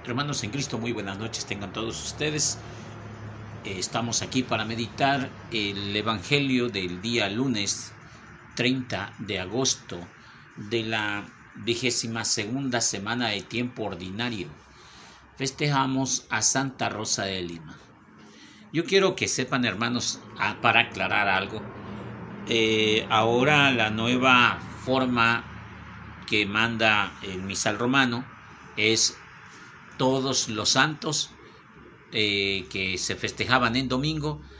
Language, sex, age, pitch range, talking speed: Spanish, male, 50-69, 100-125 Hz, 110 wpm